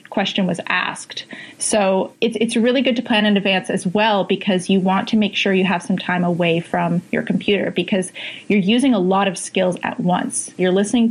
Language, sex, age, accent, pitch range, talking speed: English, female, 30-49, American, 180-205 Hz, 205 wpm